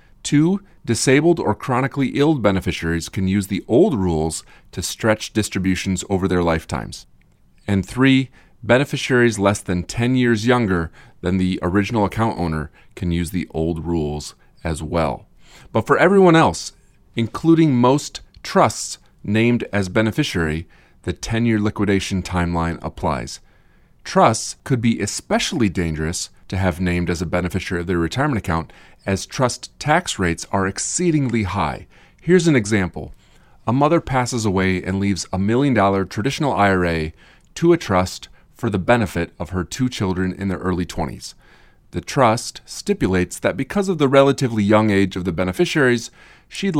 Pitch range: 90-125 Hz